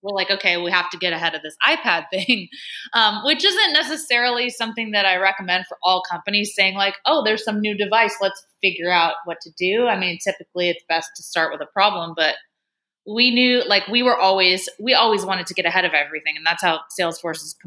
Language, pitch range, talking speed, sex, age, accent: English, 170-215 Hz, 225 wpm, female, 20-39, American